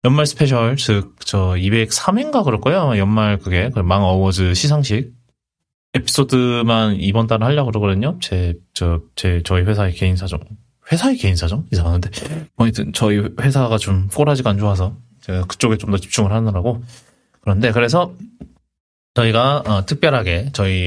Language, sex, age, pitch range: Korean, male, 20-39, 100-150 Hz